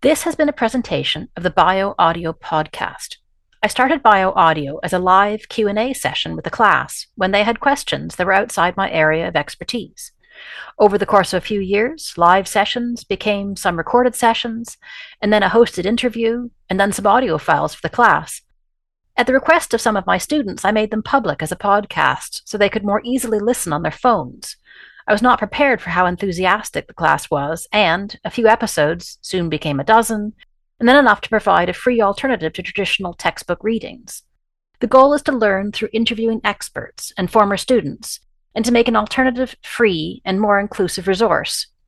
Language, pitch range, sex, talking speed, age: English, 185-240 Hz, female, 195 wpm, 40-59